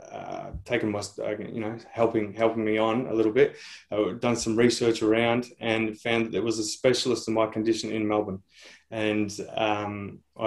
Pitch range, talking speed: 105-115 Hz, 185 wpm